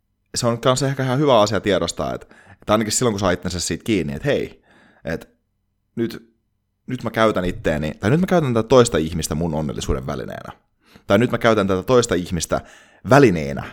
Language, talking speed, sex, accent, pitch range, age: Finnish, 190 wpm, male, native, 80-115 Hz, 30-49